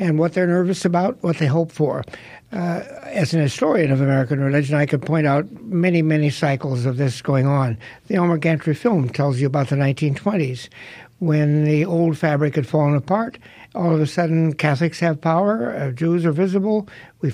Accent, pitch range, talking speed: American, 145-180 Hz, 185 wpm